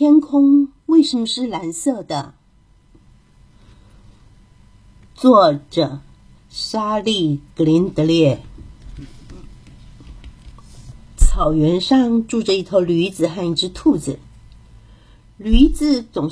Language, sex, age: Chinese, female, 50-69